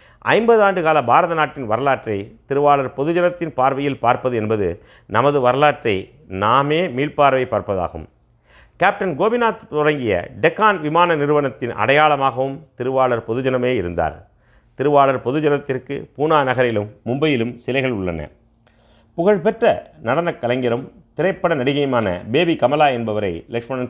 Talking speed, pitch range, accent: 105 wpm, 105-140 Hz, native